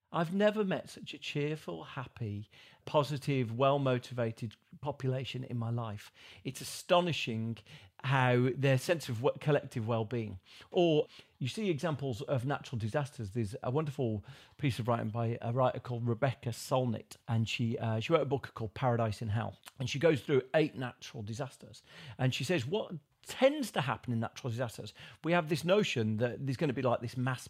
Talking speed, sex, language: 170 wpm, male, English